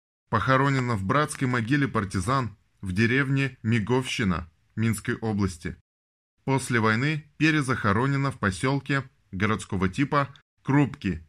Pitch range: 100-140 Hz